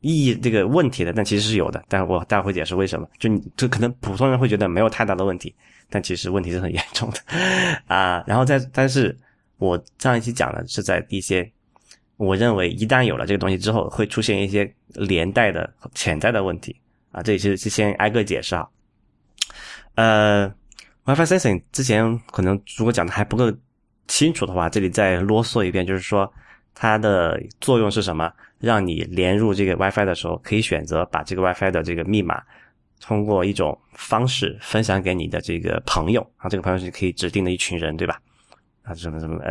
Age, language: 20-39, Chinese